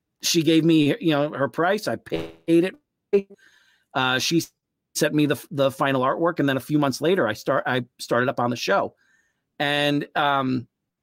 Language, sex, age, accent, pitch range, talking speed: English, male, 40-59, American, 130-165 Hz, 185 wpm